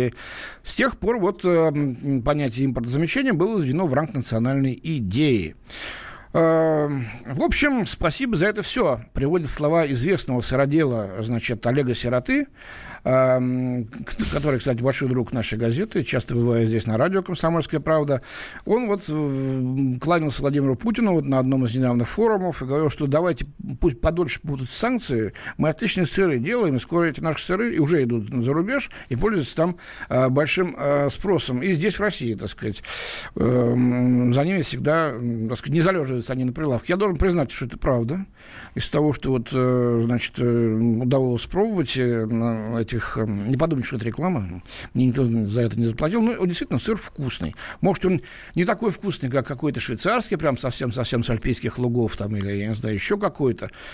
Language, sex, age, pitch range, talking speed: Russian, male, 60-79, 120-165 Hz, 160 wpm